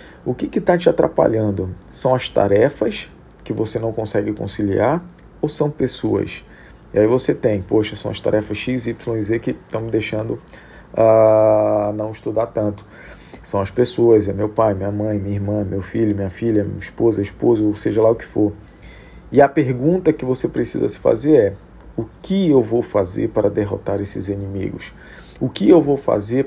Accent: Brazilian